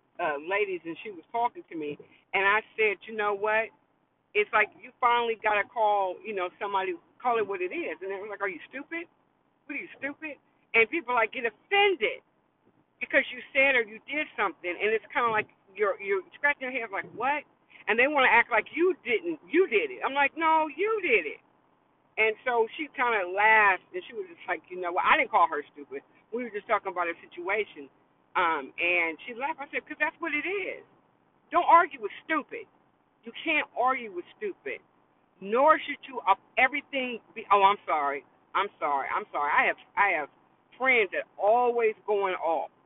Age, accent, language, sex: 50-69, American, English, female